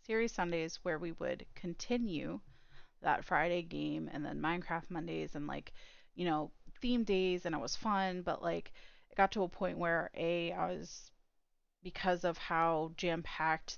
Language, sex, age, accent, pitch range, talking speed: English, female, 30-49, American, 165-200 Hz, 165 wpm